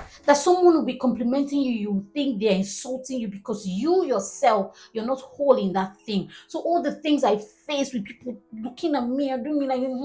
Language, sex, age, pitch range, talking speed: English, female, 30-49, 205-275 Hz, 210 wpm